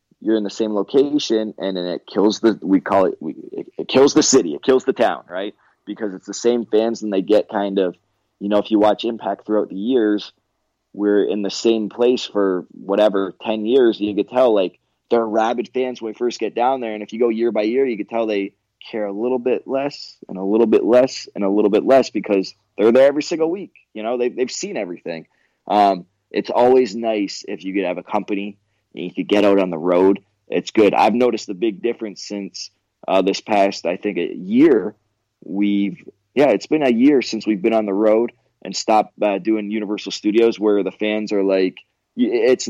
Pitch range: 100-115 Hz